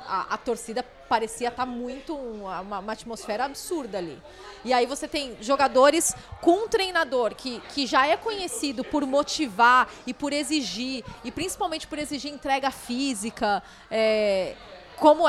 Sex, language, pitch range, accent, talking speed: female, Portuguese, 230-310 Hz, Brazilian, 150 wpm